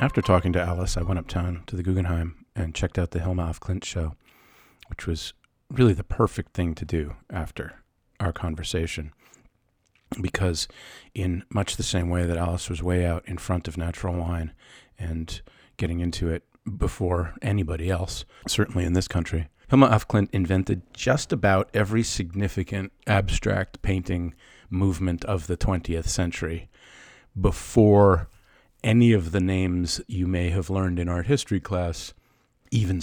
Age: 40-59